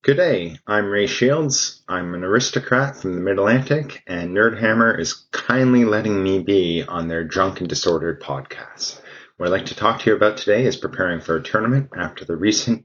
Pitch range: 90-115 Hz